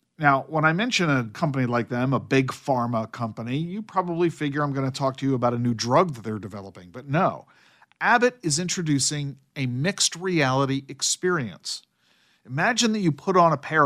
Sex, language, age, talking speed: male, English, 50-69, 190 wpm